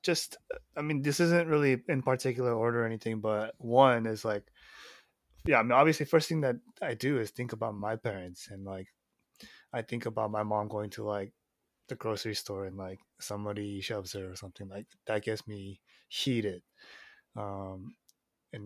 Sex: male